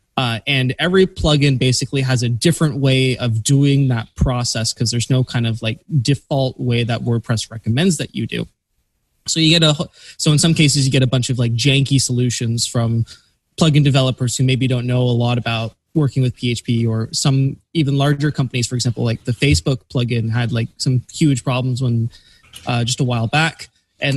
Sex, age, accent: male, 20-39, American